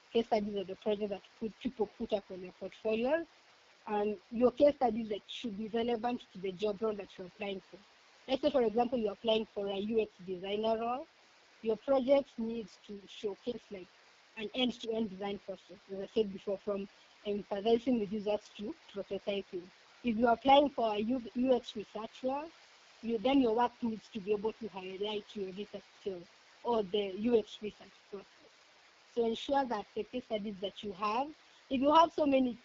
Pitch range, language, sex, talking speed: 200-235 Hz, English, female, 185 wpm